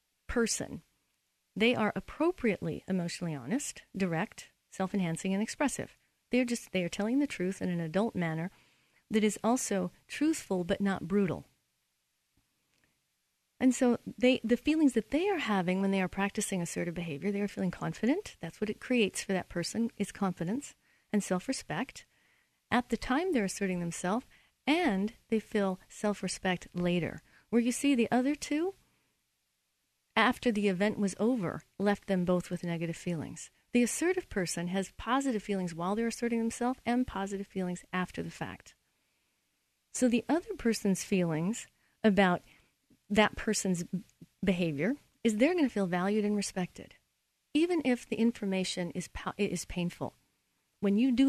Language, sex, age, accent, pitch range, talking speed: English, female, 40-59, American, 180-235 Hz, 150 wpm